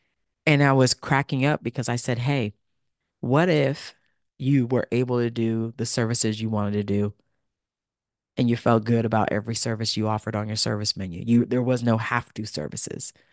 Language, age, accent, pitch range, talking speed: English, 40-59, American, 110-130 Hz, 185 wpm